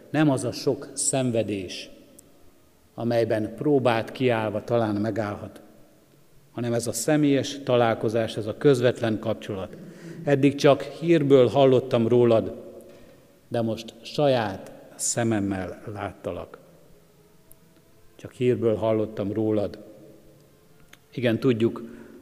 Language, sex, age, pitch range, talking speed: Hungarian, male, 50-69, 110-130 Hz, 95 wpm